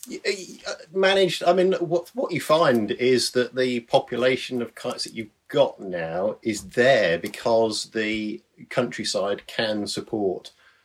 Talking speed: 135 wpm